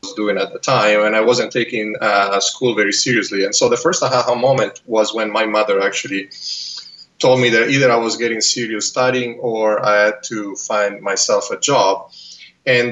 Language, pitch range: English, 105-130 Hz